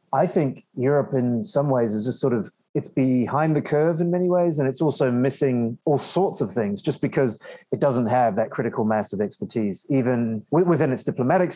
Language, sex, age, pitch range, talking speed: English, male, 30-49, 115-150 Hz, 205 wpm